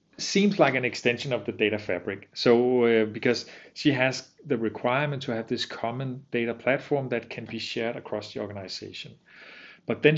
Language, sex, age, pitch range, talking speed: Danish, male, 40-59, 110-140 Hz, 175 wpm